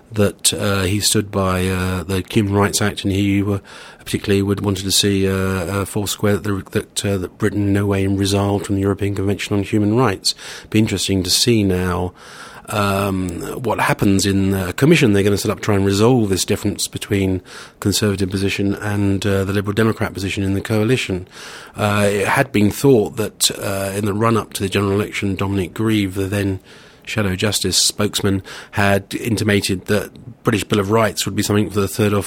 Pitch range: 95-105 Hz